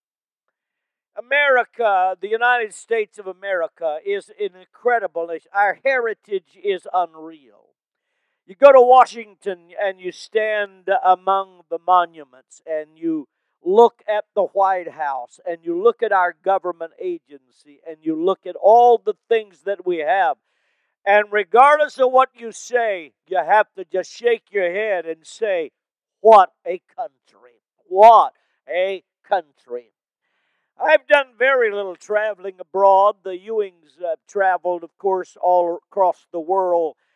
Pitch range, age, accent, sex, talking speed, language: 180-235 Hz, 50-69, American, male, 135 wpm, English